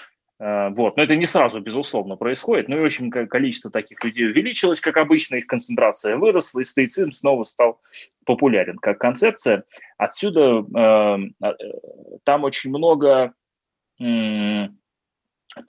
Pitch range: 110-155 Hz